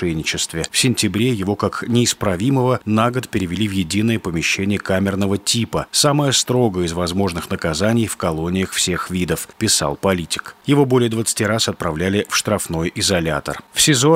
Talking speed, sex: 150 wpm, male